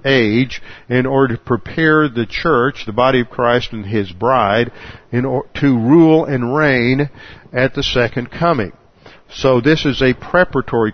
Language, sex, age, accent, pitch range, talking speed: English, male, 50-69, American, 115-135 Hz, 155 wpm